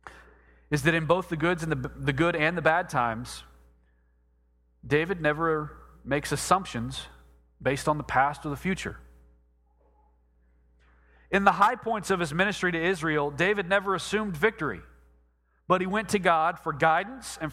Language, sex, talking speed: English, male, 145 wpm